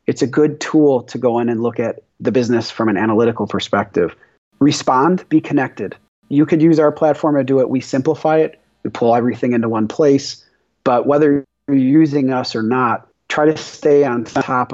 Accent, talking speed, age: American, 195 wpm, 30-49